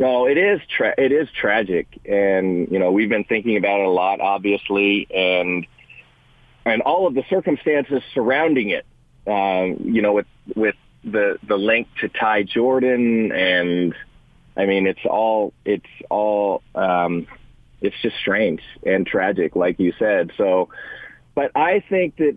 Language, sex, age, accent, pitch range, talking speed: English, male, 40-59, American, 100-125 Hz, 155 wpm